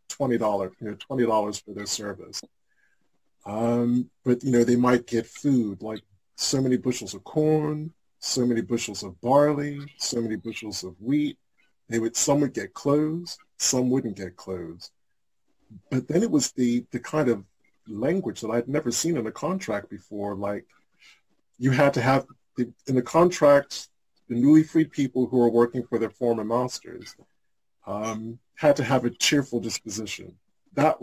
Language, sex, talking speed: English, male, 170 wpm